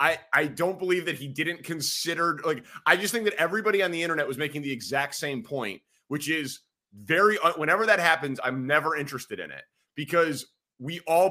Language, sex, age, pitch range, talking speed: English, male, 30-49, 135-170 Hz, 195 wpm